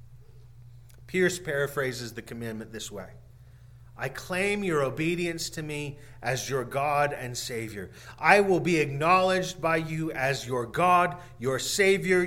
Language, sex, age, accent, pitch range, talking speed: English, male, 40-59, American, 120-175 Hz, 135 wpm